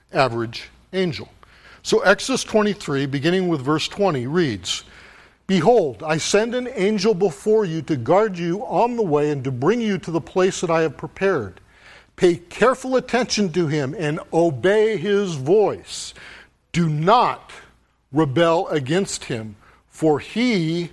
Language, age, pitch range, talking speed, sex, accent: English, 50-69, 140-195 Hz, 145 wpm, male, American